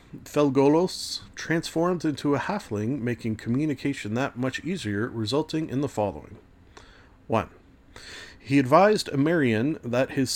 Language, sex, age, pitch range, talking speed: English, male, 40-59, 115-155 Hz, 115 wpm